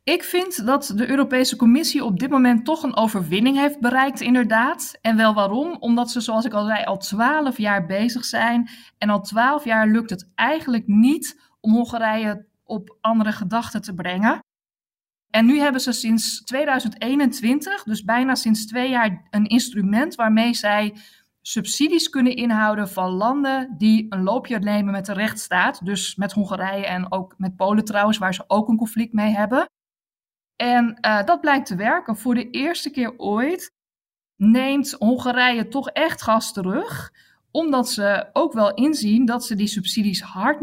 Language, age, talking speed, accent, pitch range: Dutch, 20-39, 165 wpm, Dutch, 210-260 Hz